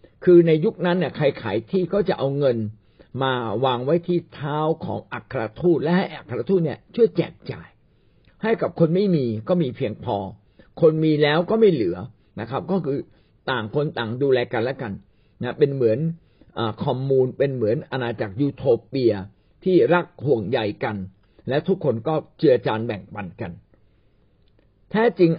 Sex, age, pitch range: male, 60-79, 115-170 Hz